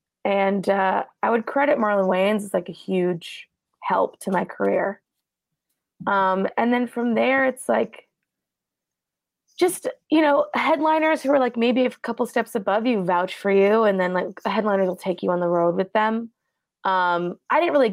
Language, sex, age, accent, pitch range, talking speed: English, female, 20-39, American, 190-245 Hz, 180 wpm